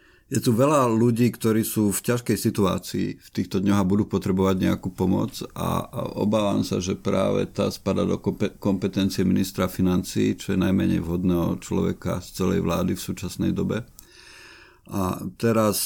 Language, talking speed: Slovak, 150 wpm